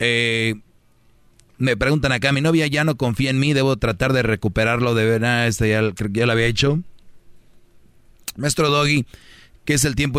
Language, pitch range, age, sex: Spanish, 110-135 Hz, 40-59, male